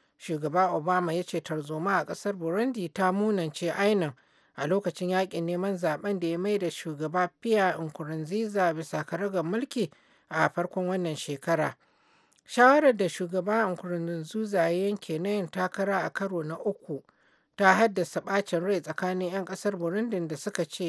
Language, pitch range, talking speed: English, 165-195 Hz, 150 wpm